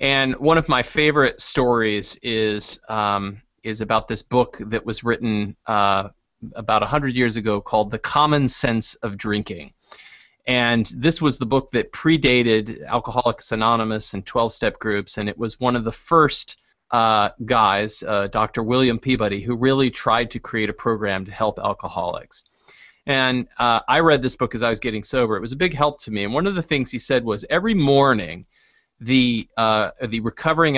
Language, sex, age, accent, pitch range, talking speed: English, male, 30-49, American, 110-135 Hz, 180 wpm